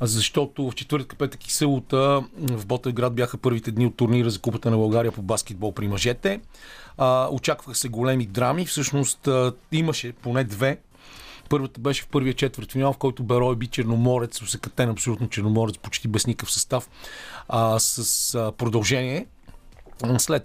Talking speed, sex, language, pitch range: 150 wpm, male, Bulgarian, 115-140 Hz